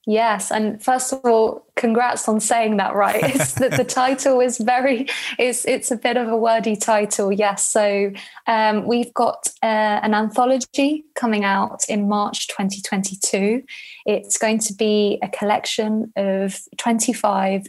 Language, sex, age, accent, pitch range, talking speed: English, female, 20-39, British, 195-235 Hz, 150 wpm